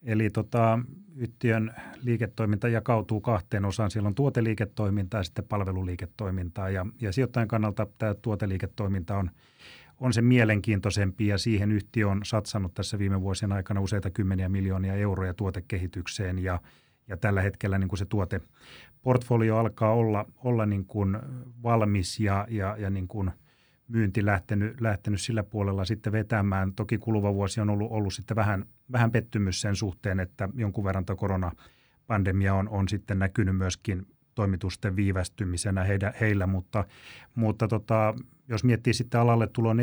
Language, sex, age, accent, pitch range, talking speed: Finnish, male, 30-49, native, 95-110 Hz, 145 wpm